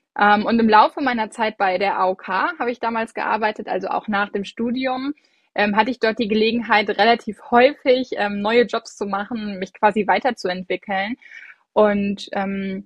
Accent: German